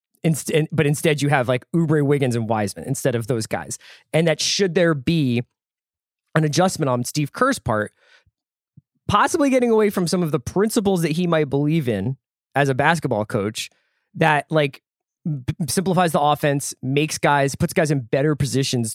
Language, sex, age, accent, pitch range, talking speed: English, male, 20-39, American, 125-160 Hz, 170 wpm